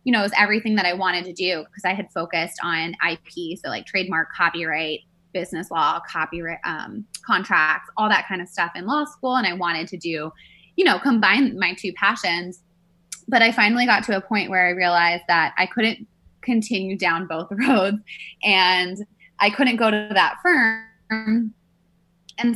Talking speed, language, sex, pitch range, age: 185 wpm, English, female, 175-215 Hz, 20-39